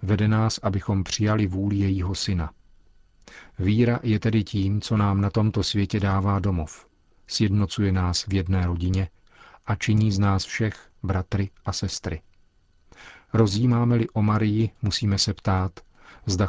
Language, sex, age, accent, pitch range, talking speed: Czech, male, 40-59, native, 95-105 Hz, 140 wpm